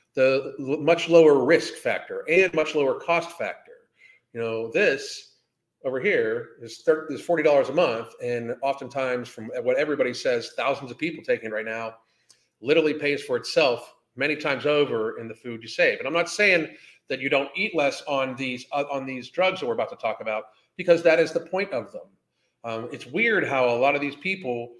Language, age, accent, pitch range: English, 40-59, American, 120-170 Hz